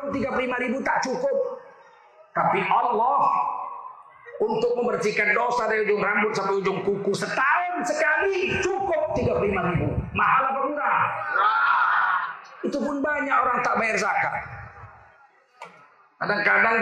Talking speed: 110 wpm